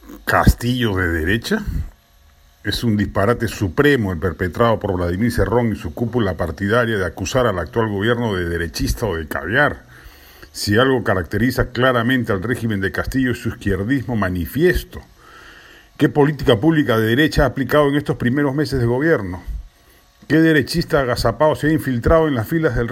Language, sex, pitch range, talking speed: Spanish, male, 110-155 Hz, 160 wpm